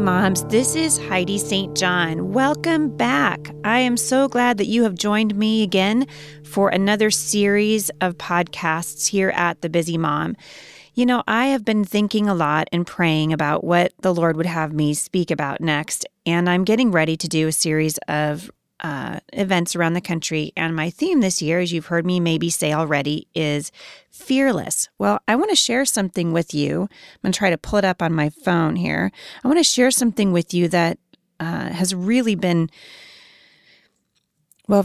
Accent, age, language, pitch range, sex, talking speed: American, 30-49, English, 155-205 Hz, female, 190 wpm